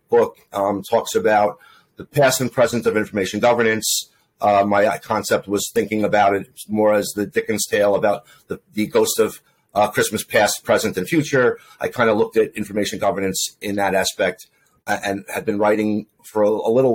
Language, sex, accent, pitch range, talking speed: English, male, American, 105-130 Hz, 190 wpm